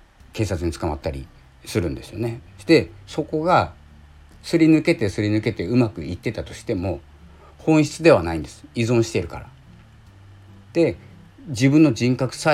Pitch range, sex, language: 85-115 Hz, male, Japanese